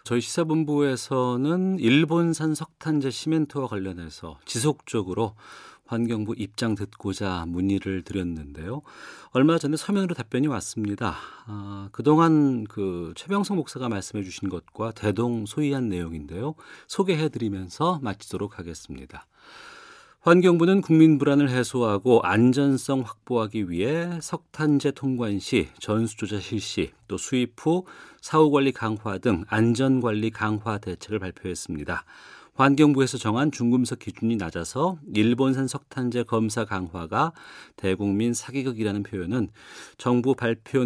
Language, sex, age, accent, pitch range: Korean, male, 40-59, native, 100-140 Hz